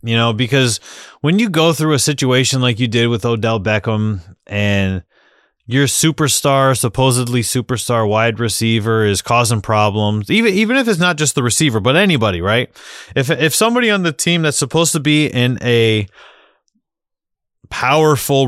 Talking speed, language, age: 160 wpm, English, 30-49